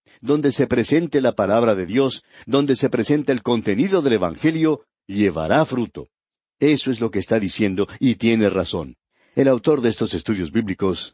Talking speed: 165 wpm